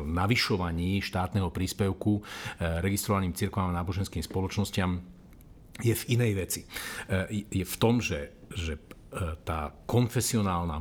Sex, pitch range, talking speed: male, 90-115 Hz, 105 wpm